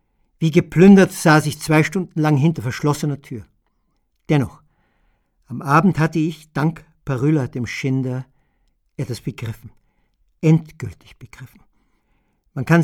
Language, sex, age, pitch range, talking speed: German, male, 50-69, 125-160 Hz, 115 wpm